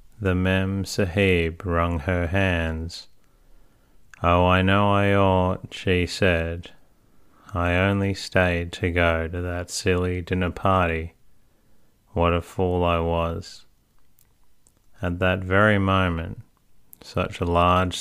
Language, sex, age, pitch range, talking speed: English, male, 30-49, 85-95 Hz, 115 wpm